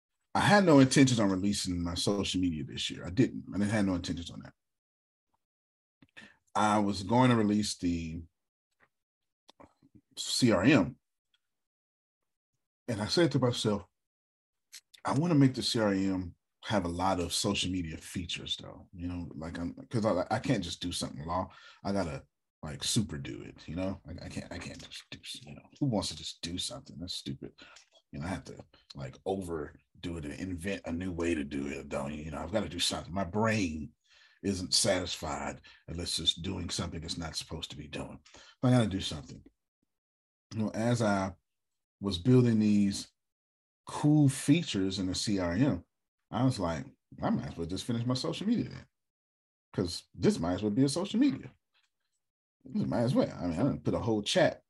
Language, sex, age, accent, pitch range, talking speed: English, male, 30-49, American, 80-110 Hz, 190 wpm